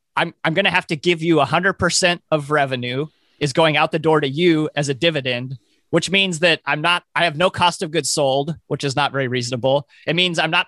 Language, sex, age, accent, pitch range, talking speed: English, male, 30-49, American, 135-170 Hz, 235 wpm